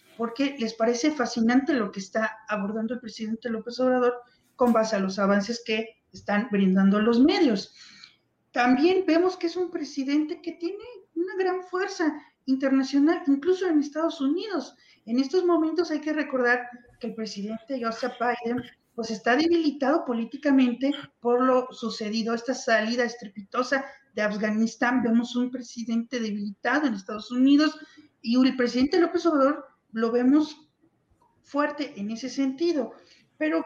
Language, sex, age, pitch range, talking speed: Spanish, female, 40-59, 230-300 Hz, 145 wpm